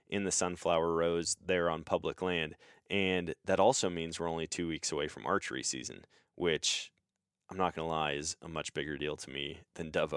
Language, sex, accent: English, male, American